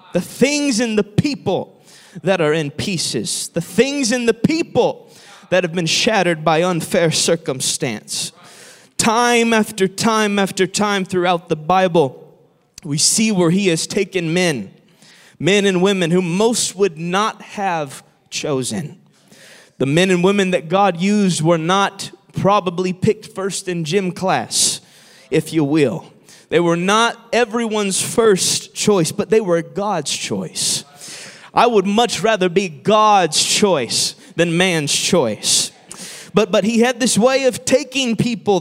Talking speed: 145 wpm